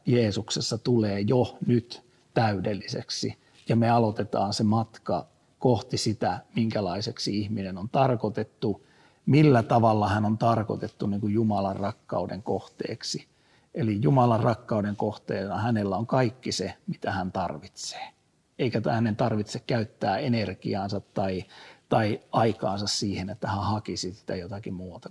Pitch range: 100-125 Hz